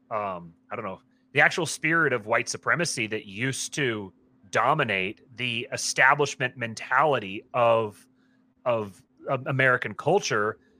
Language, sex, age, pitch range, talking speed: English, male, 30-49, 110-145 Hz, 120 wpm